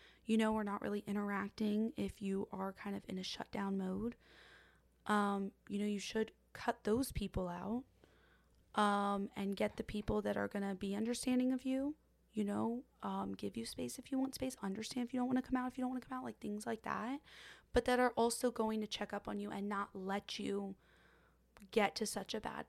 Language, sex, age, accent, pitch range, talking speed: English, female, 20-39, American, 200-225 Hz, 225 wpm